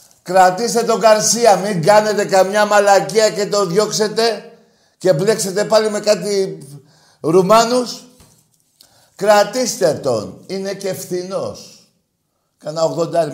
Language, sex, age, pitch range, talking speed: Greek, male, 50-69, 165-230 Hz, 105 wpm